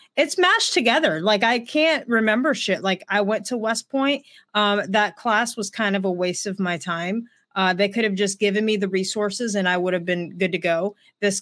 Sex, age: female, 30-49